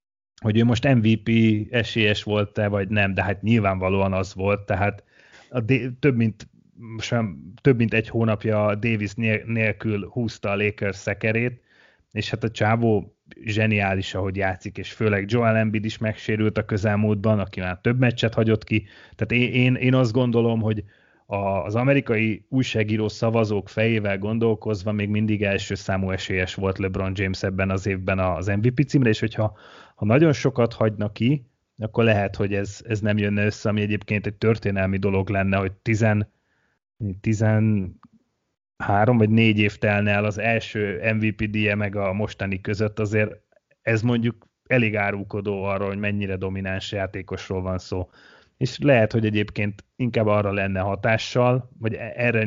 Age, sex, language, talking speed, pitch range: 30-49, male, Hungarian, 155 wpm, 100-115 Hz